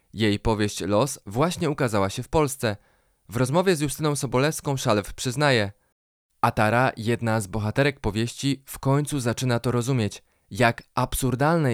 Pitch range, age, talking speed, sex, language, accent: 115-145 Hz, 20-39, 140 wpm, male, Polish, native